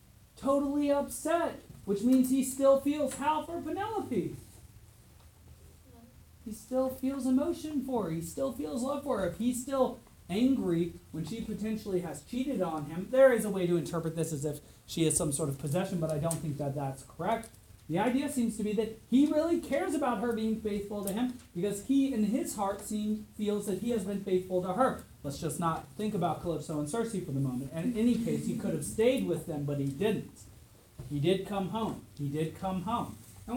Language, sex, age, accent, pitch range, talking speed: English, male, 30-49, American, 160-240 Hz, 205 wpm